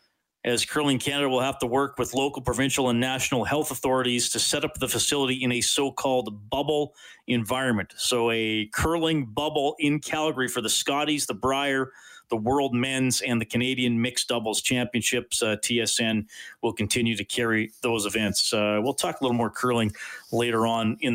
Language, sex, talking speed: English, male, 175 wpm